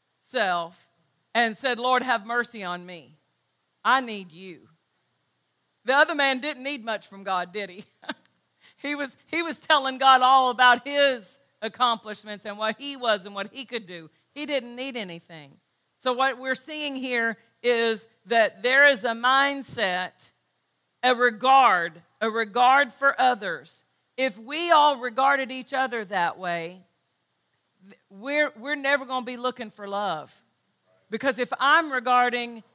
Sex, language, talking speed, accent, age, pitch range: female, English, 150 wpm, American, 50-69, 215-270 Hz